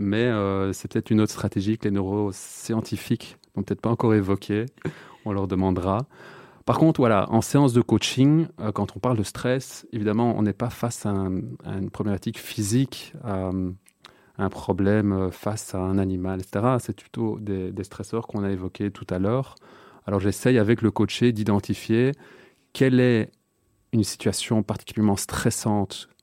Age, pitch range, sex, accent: 30-49, 100-120 Hz, male, French